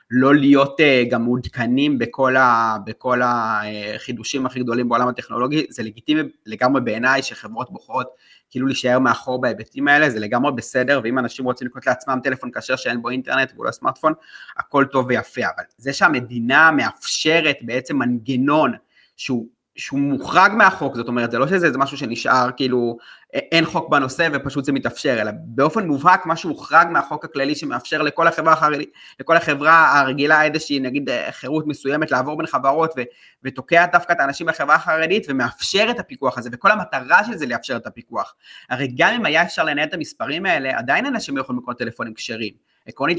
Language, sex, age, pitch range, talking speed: Hebrew, male, 30-49, 125-155 Hz, 170 wpm